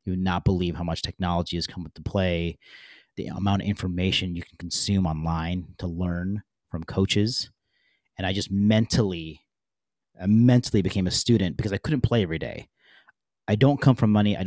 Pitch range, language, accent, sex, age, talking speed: 90-105 Hz, English, American, male, 30-49, 185 wpm